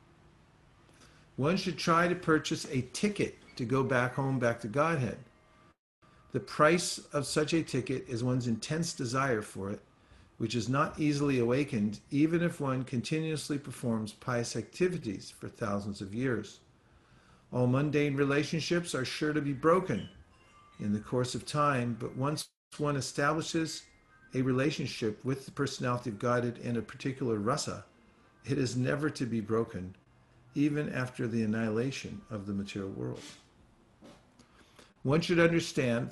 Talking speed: 145 wpm